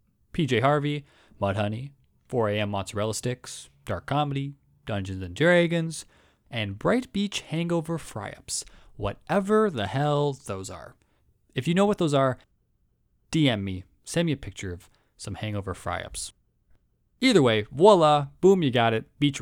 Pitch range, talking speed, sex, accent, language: 100-155 Hz, 145 wpm, male, American, English